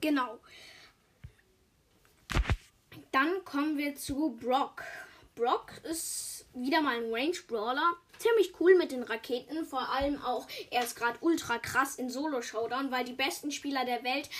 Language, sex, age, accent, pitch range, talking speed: German, female, 10-29, German, 245-325 Hz, 140 wpm